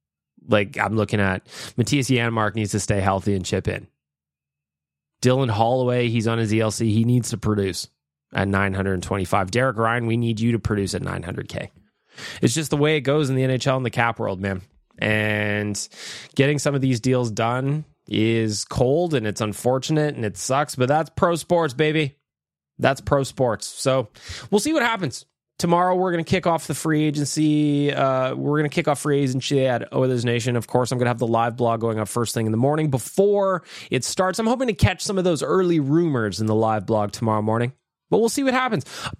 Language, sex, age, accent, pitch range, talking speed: English, male, 20-39, American, 105-150 Hz, 210 wpm